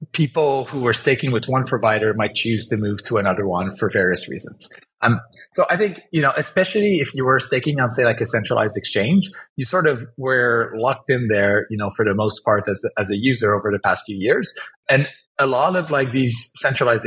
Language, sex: English, male